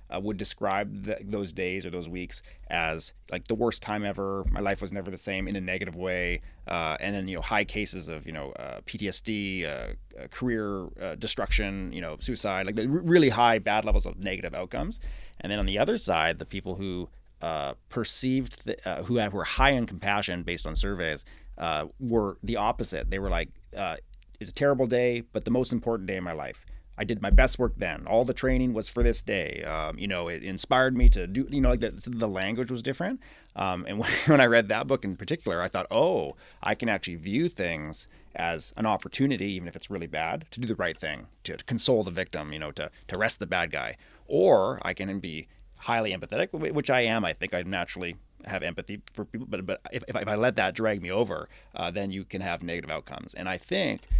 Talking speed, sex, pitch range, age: 230 wpm, male, 90-115 Hz, 30-49